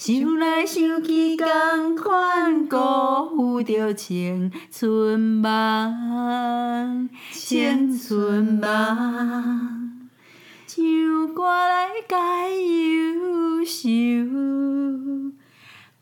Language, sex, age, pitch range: Chinese, female, 40-59, 215-320 Hz